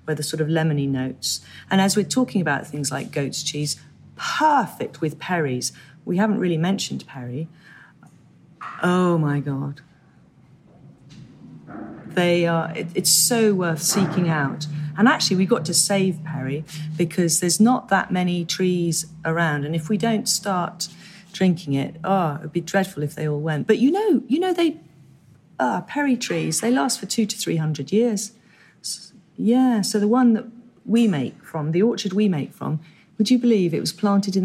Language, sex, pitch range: English, female, 160-210 Hz